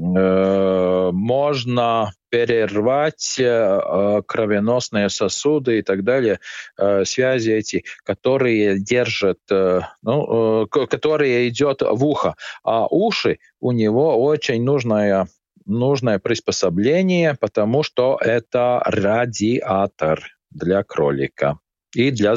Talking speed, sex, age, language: 85 wpm, male, 40-59, Russian